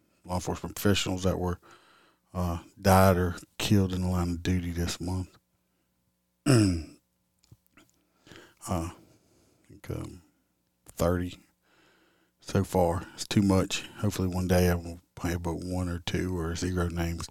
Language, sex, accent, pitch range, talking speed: English, male, American, 85-95 Hz, 135 wpm